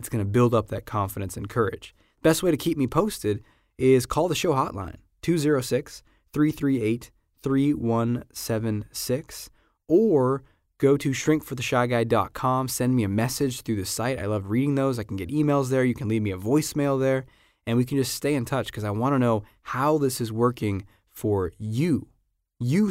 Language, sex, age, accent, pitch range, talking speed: English, male, 20-39, American, 105-135 Hz, 175 wpm